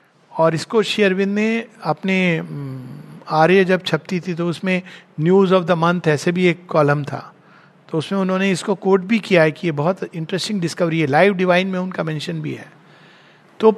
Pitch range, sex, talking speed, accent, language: 165-200 Hz, male, 185 wpm, native, Hindi